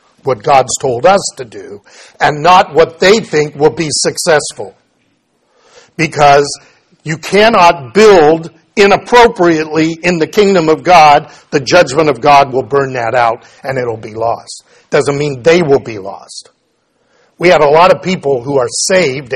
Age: 50-69